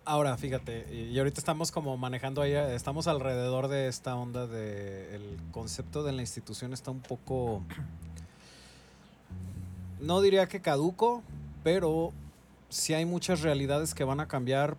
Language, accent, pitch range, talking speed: Spanish, Mexican, 95-135 Hz, 140 wpm